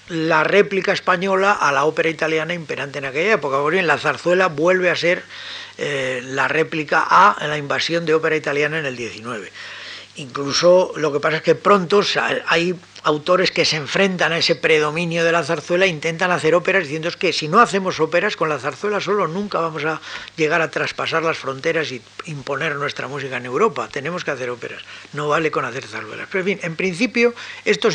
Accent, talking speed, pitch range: Spanish, 195 wpm, 155-195 Hz